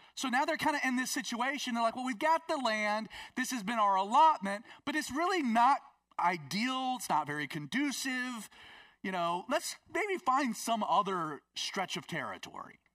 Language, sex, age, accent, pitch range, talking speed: English, male, 30-49, American, 160-245 Hz, 180 wpm